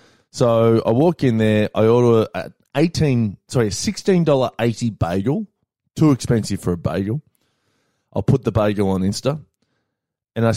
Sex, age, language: male, 20-39, English